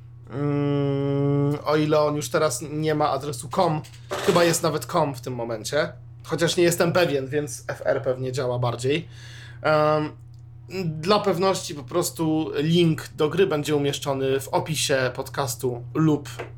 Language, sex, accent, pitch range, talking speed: Polish, male, native, 120-155 Hz, 145 wpm